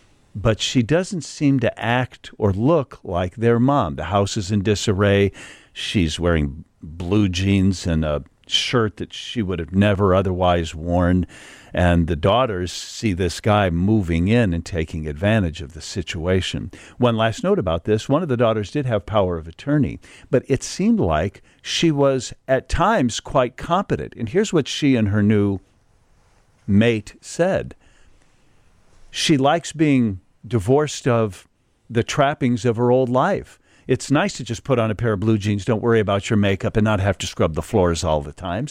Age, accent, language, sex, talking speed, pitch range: 50-69, American, English, male, 175 wpm, 95-130 Hz